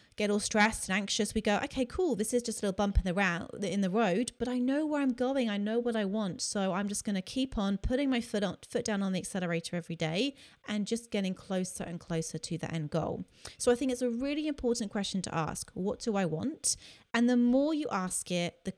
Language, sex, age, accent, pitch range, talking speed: English, female, 30-49, British, 185-235 Hz, 255 wpm